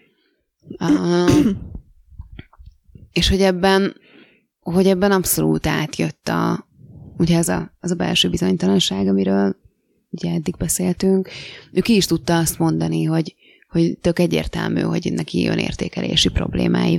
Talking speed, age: 125 wpm, 20-39